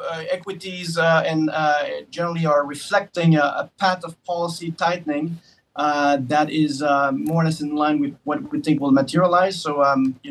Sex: male